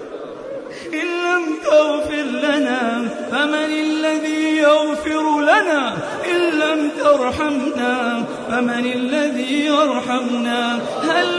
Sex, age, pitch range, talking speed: male, 30-49, 250-320 Hz, 80 wpm